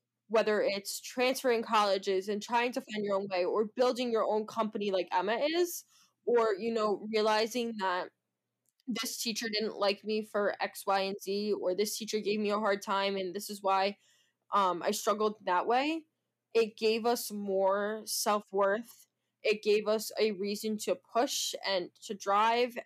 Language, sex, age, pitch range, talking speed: English, female, 10-29, 200-230 Hz, 175 wpm